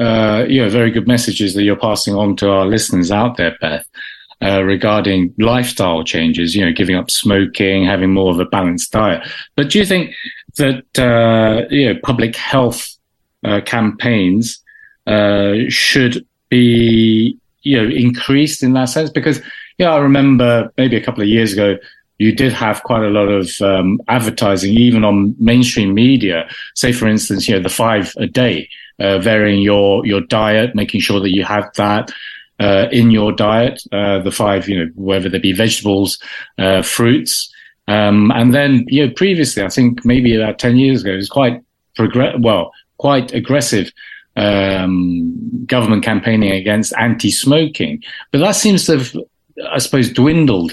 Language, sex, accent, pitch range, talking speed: English, male, British, 100-125 Hz, 170 wpm